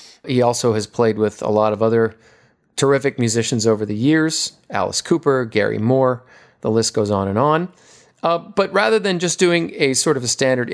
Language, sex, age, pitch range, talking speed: English, male, 40-59, 110-150 Hz, 195 wpm